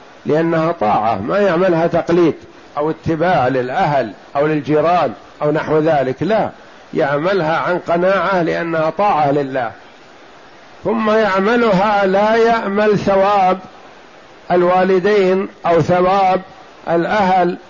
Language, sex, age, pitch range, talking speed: Arabic, male, 50-69, 165-200 Hz, 100 wpm